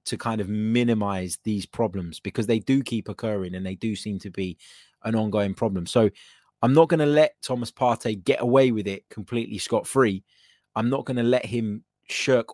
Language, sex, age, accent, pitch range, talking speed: English, male, 20-39, British, 100-120 Hz, 200 wpm